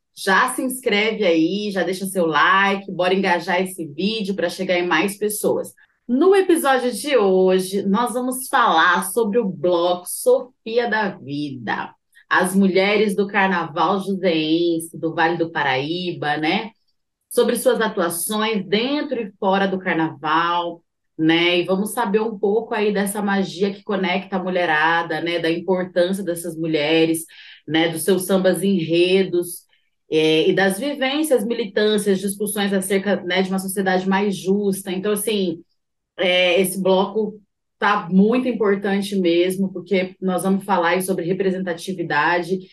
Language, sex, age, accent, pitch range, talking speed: Portuguese, female, 20-39, Brazilian, 180-220 Hz, 140 wpm